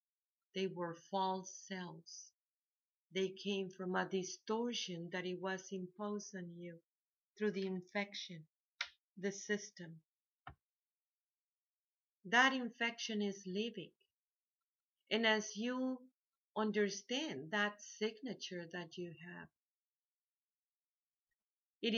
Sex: female